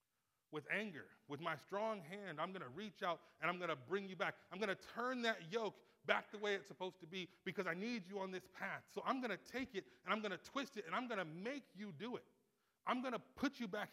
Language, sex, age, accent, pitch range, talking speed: English, male, 30-49, American, 145-225 Hz, 275 wpm